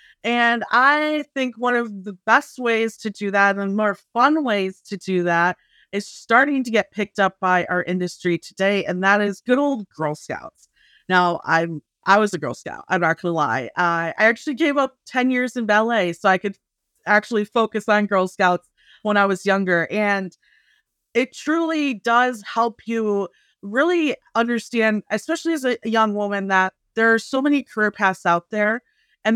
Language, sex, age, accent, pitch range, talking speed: English, female, 30-49, American, 185-230 Hz, 185 wpm